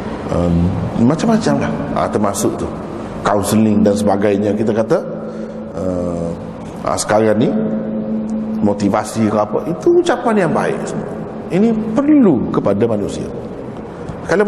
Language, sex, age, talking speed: Malay, male, 50-69, 110 wpm